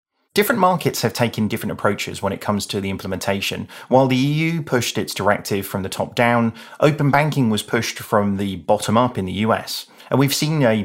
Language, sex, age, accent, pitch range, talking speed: English, male, 30-49, British, 105-130 Hz, 205 wpm